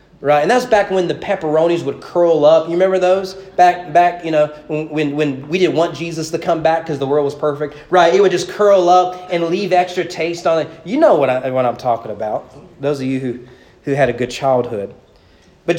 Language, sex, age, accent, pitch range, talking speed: English, male, 30-49, American, 130-180 Hz, 230 wpm